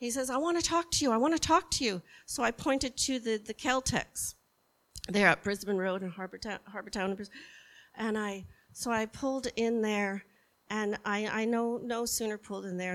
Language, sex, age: English, female, 50-69